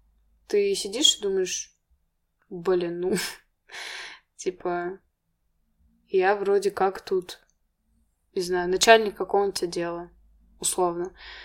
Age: 20-39